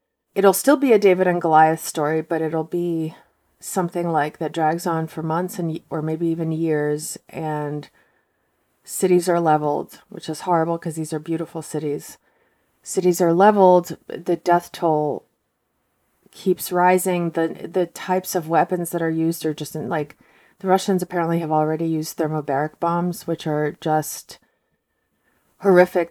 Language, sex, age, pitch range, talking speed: English, female, 30-49, 155-180 Hz, 155 wpm